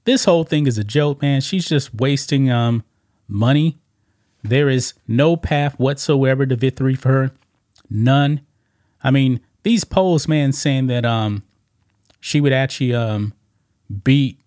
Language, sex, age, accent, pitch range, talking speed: English, male, 30-49, American, 110-145 Hz, 145 wpm